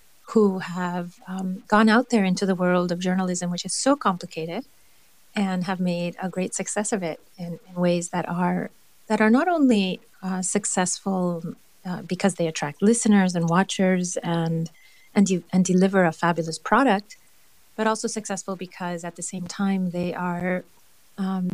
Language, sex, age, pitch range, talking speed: English, female, 40-59, 180-220 Hz, 165 wpm